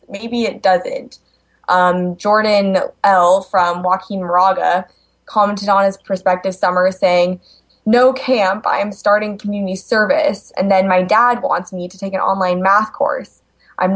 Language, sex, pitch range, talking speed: English, female, 185-230 Hz, 145 wpm